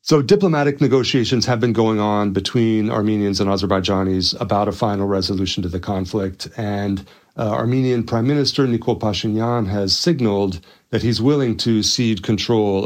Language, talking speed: English, 155 wpm